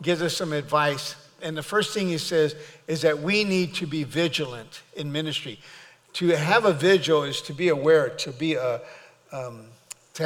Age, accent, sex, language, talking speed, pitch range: 50-69, American, male, English, 185 wpm, 145-180 Hz